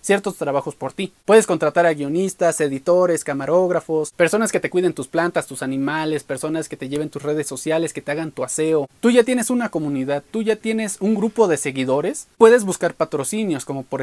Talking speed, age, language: 200 wpm, 30-49, Spanish